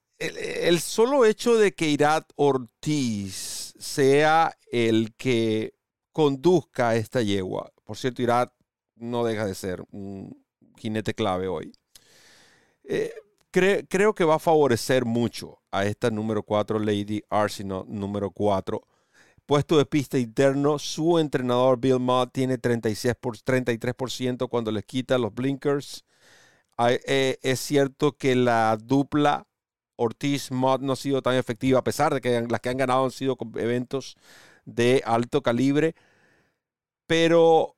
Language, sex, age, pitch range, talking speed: Spanish, male, 40-59, 115-145 Hz, 140 wpm